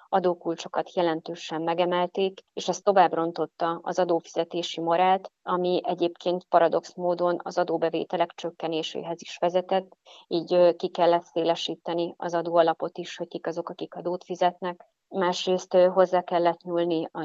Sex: female